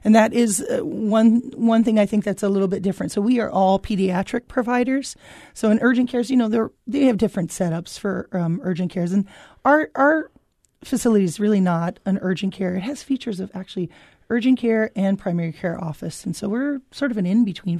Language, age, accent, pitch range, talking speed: English, 30-49, American, 175-225 Hz, 205 wpm